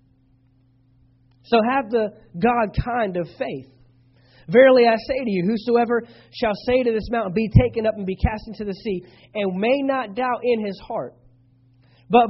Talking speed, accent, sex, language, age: 170 wpm, American, male, English, 30-49